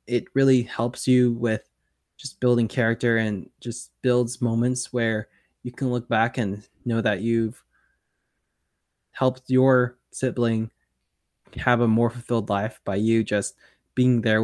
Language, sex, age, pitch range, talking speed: English, male, 10-29, 105-125 Hz, 140 wpm